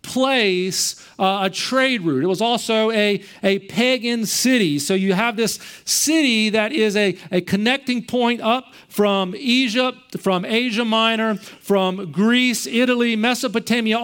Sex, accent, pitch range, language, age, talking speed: male, American, 200-245 Hz, English, 40-59, 140 wpm